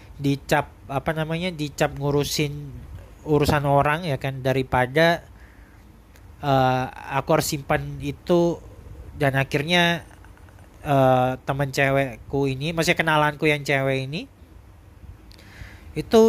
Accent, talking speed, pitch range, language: native, 100 wpm, 120-155 Hz, Indonesian